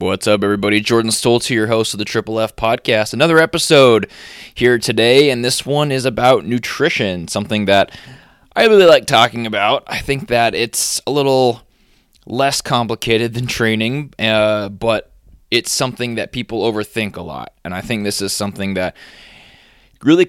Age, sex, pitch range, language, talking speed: 20-39, male, 100-125 Hz, English, 165 wpm